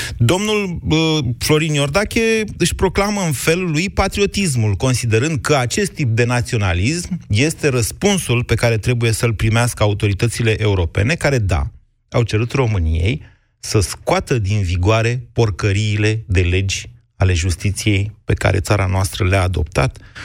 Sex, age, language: male, 30-49, Romanian